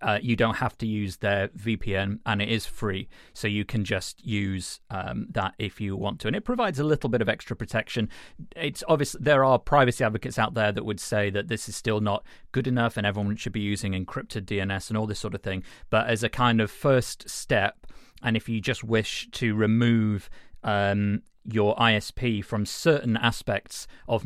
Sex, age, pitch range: male, 30-49, 100-120 Hz